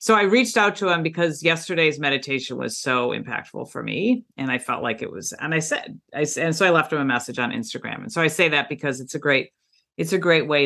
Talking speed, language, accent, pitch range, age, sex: 260 wpm, English, American, 130-175 Hz, 50-69, female